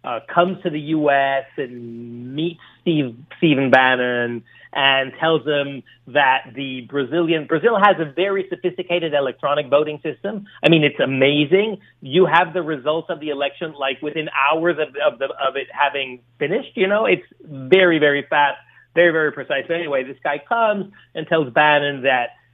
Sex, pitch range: male, 135-175 Hz